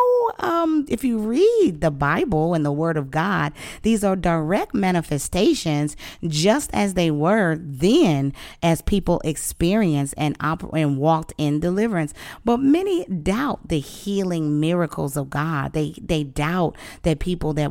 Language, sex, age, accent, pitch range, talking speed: English, female, 40-59, American, 150-205 Hz, 140 wpm